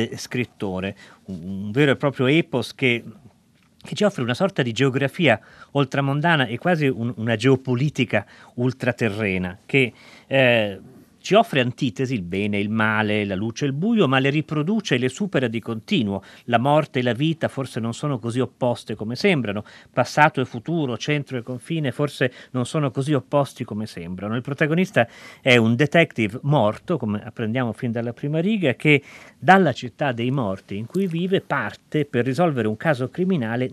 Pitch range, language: 115-155 Hz, Italian